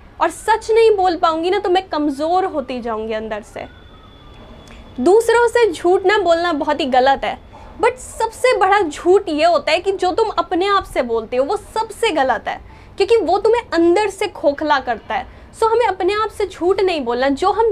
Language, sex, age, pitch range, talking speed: Hindi, female, 20-39, 290-415 Hz, 200 wpm